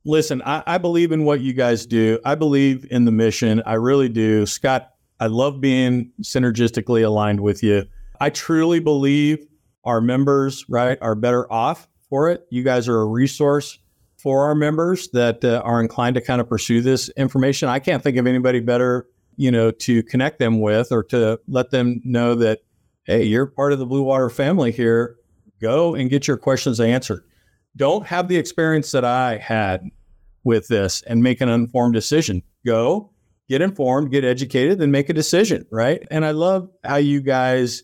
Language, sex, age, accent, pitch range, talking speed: English, male, 50-69, American, 115-150 Hz, 185 wpm